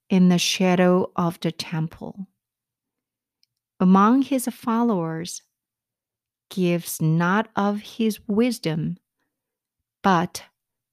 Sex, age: female, 50-69